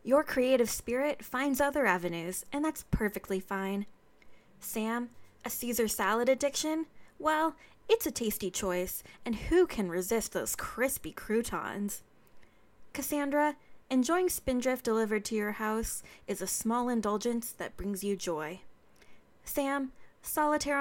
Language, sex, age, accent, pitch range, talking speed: English, female, 20-39, American, 200-270 Hz, 125 wpm